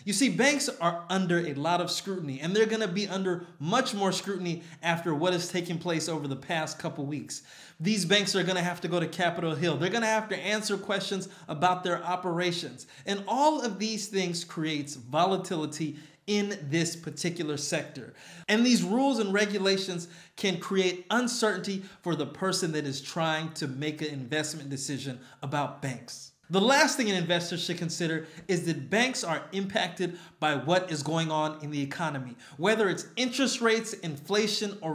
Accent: American